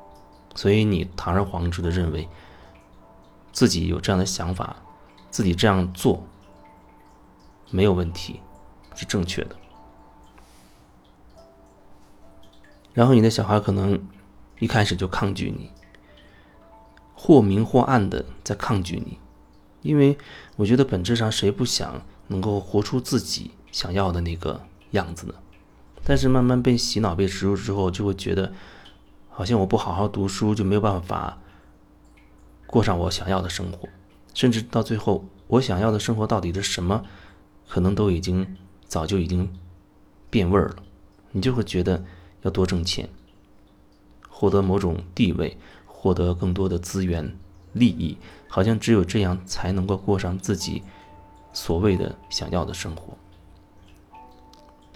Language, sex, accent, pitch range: Chinese, male, native, 90-105 Hz